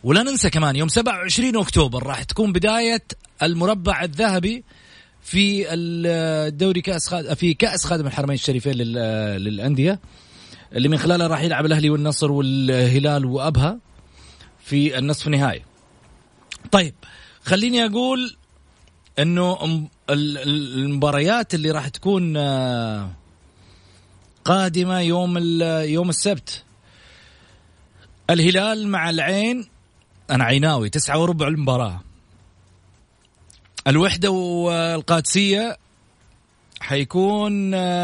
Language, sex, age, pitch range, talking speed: Arabic, male, 30-49, 115-180 Hz, 85 wpm